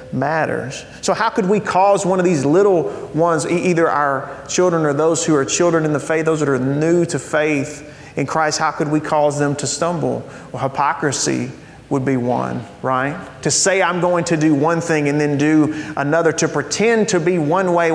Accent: American